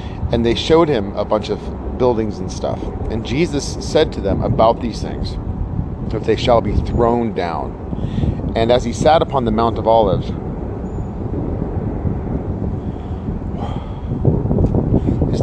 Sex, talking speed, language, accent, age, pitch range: male, 130 wpm, English, American, 40-59, 95-120 Hz